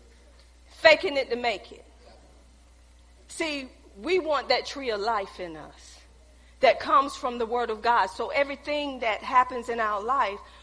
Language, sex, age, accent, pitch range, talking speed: English, female, 40-59, American, 250-355 Hz, 160 wpm